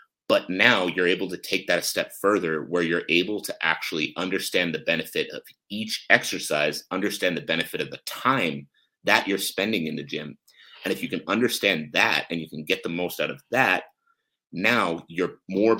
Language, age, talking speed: English, 30-49, 195 wpm